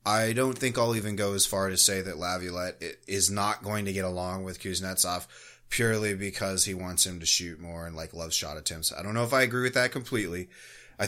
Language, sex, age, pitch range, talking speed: English, male, 20-39, 90-110 Hz, 235 wpm